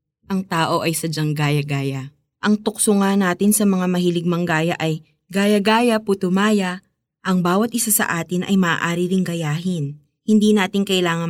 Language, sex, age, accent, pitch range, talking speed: Filipino, female, 20-39, native, 155-215 Hz, 155 wpm